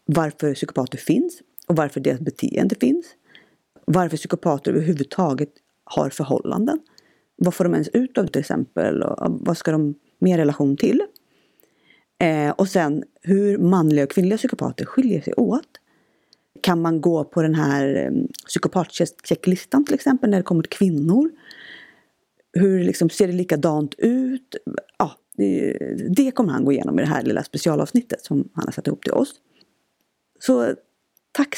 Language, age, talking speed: Swedish, 30-49, 150 wpm